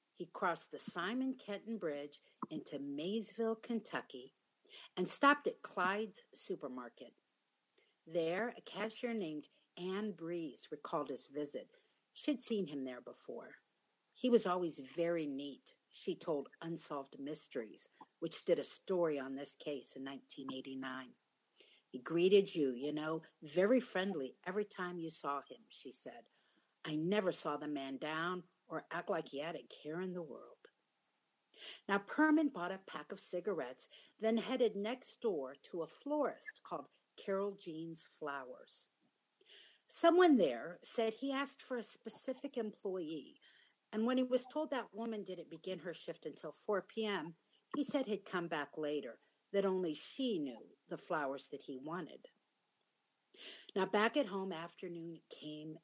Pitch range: 155-225 Hz